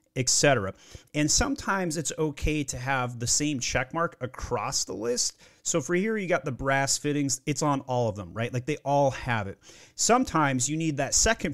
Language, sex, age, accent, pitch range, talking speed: English, male, 30-49, American, 125-170 Hz, 200 wpm